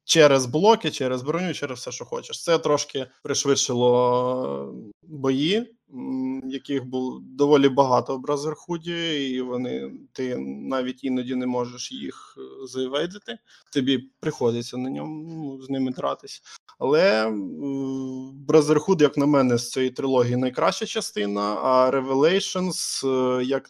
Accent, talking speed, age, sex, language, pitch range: native, 120 wpm, 20-39, male, Ukrainian, 125-155 Hz